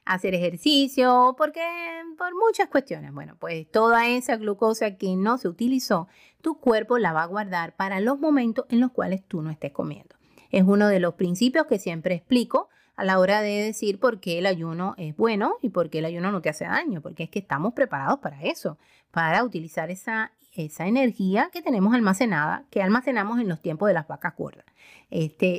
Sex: female